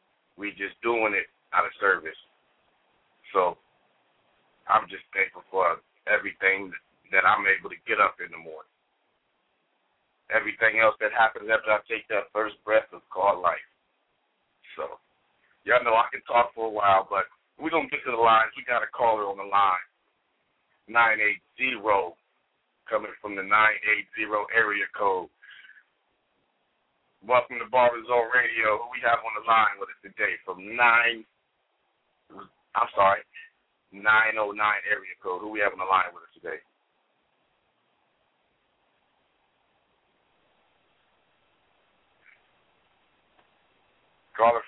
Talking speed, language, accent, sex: 135 wpm, English, American, male